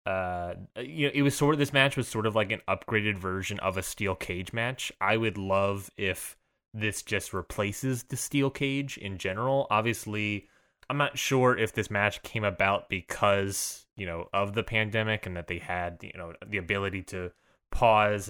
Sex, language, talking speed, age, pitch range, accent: male, English, 190 wpm, 20-39, 100-120 Hz, American